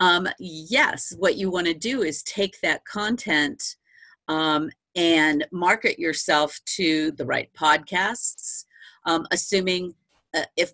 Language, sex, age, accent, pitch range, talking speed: English, female, 50-69, American, 160-205 Hz, 130 wpm